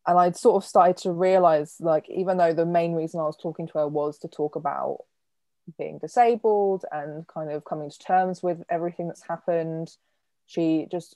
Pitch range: 155-185 Hz